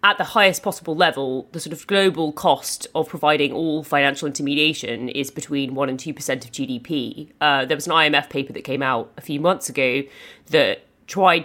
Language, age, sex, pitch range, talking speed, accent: English, 30-49, female, 140-165 Hz, 195 wpm, British